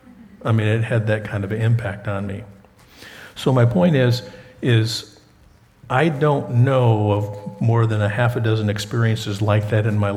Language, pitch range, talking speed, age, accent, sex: English, 105-130 Hz, 175 wpm, 50-69, American, male